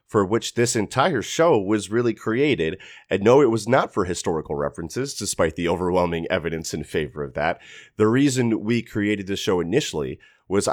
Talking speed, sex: 180 wpm, male